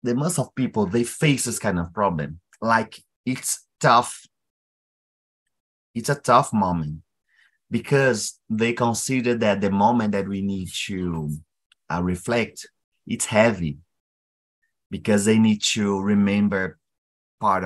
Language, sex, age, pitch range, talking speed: Portuguese, male, 30-49, 100-140 Hz, 125 wpm